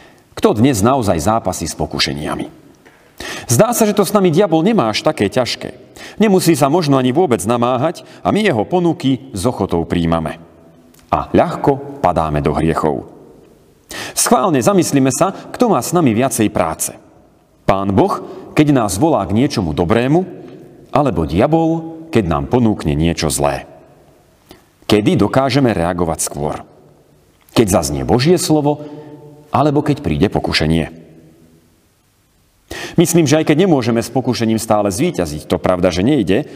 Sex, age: male, 40-59